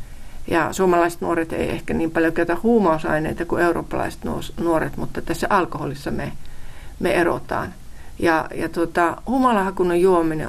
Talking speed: 125 wpm